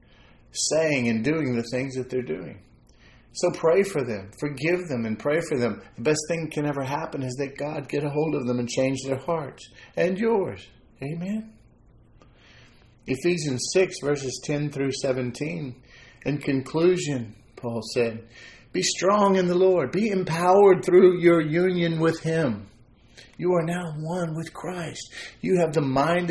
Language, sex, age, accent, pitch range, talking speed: English, male, 40-59, American, 120-160 Hz, 160 wpm